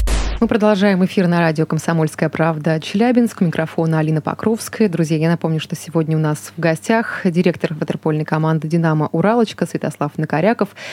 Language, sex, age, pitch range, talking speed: Russian, female, 20-39, 160-200 Hz, 150 wpm